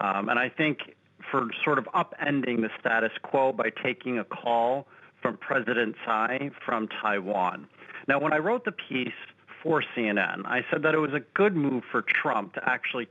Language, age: English, 40-59